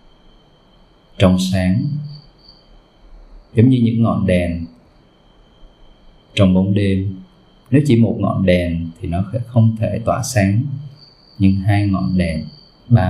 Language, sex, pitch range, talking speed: Vietnamese, male, 95-120 Hz, 125 wpm